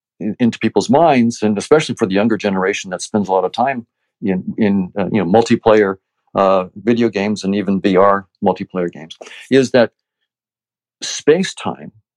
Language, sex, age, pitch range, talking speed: English, male, 50-69, 105-125 Hz, 165 wpm